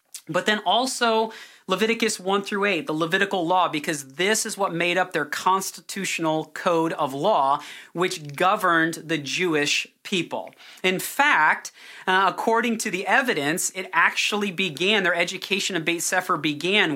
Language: English